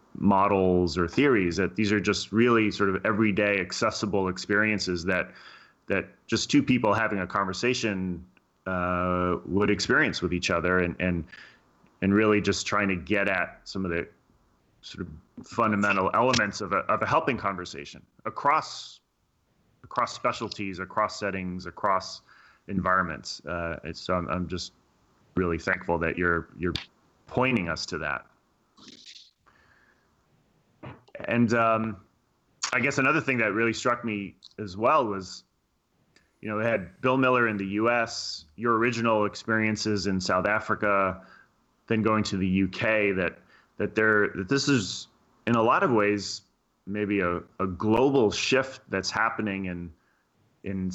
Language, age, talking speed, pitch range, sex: English, 30-49, 145 wpm, 90-110 Hz, male